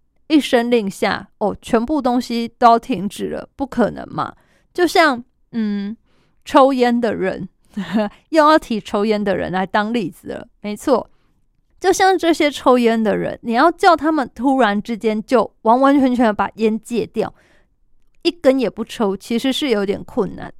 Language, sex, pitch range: Chinese, female, 210-265 Hz